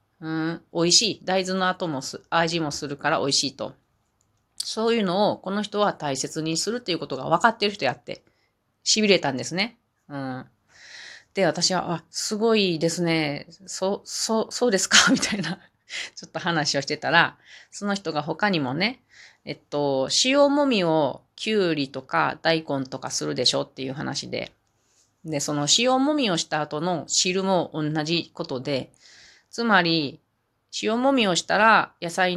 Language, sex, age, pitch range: Japanese, female, 30-49, 140-190 Hz